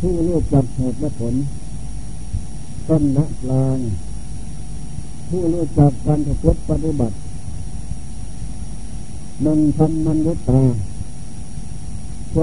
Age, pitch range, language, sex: 60-79, 120-155 Hz, Thai, male